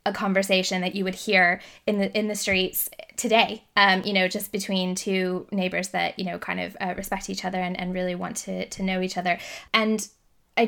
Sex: female